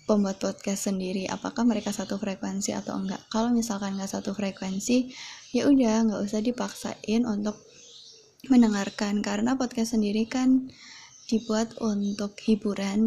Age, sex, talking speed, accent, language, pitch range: 20-39, female, 130 wpm, native, Indonesian, 205-235 Hz